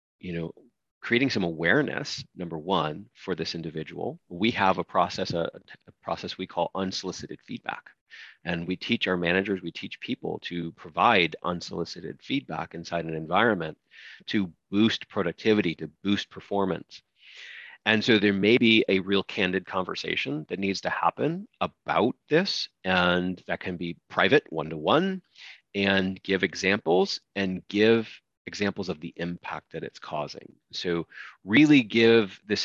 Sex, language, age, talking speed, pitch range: male, English, 30-49, 145 wpm, 90-105 Hz